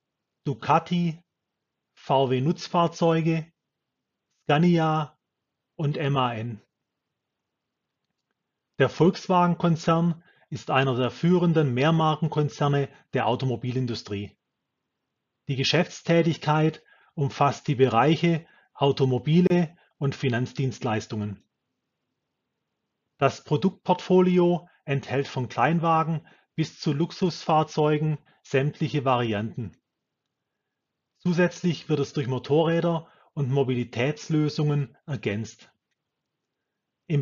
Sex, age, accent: male, 30-49, German